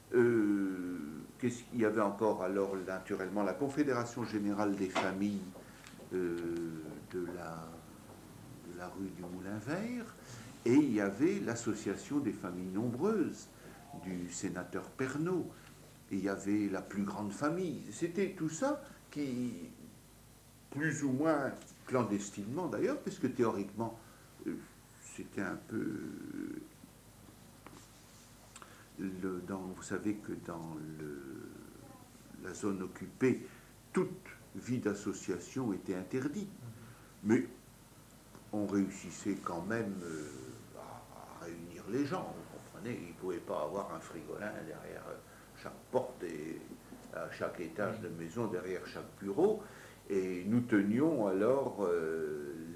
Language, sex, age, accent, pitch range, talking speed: English, male, 60-79, French, 90-120 Hz, 125 wpm